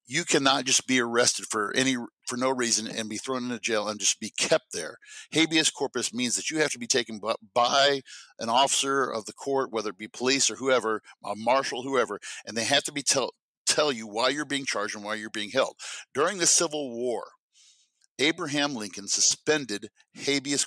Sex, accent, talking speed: male, American, 200 wpm